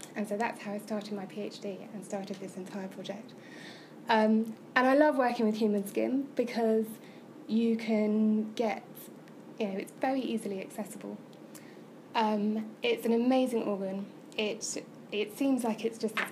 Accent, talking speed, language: British, 160 wpm, English